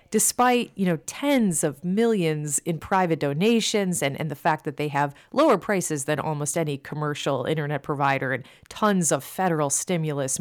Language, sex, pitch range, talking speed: English, female, 145-185 Hz, 165 wpm